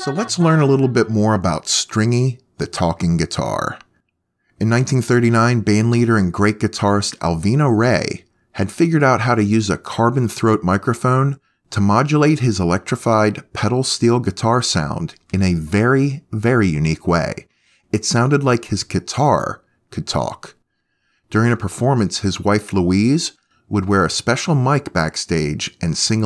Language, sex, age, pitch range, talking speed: English, male, 30-49, 95-125 Hz, 150 wpm